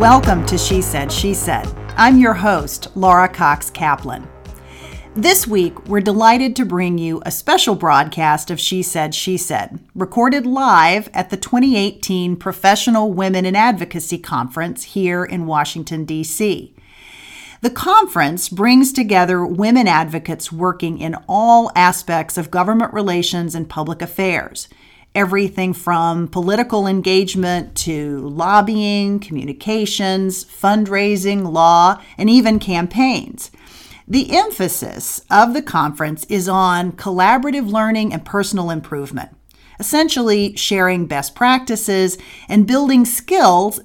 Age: 40-59